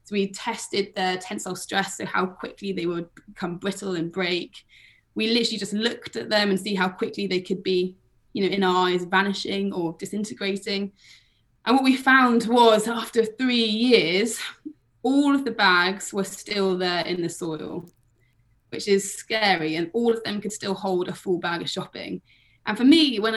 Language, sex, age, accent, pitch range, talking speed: English, female, 20-39, British, 185-230 Hz, 185 wpm